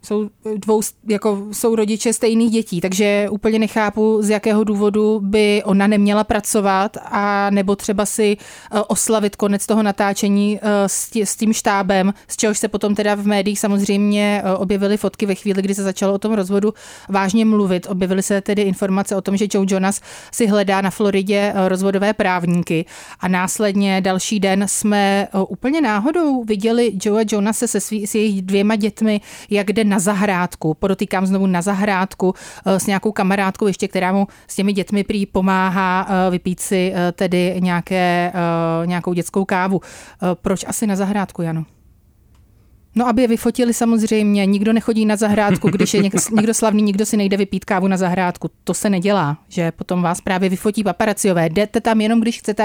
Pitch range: 190-215 Hz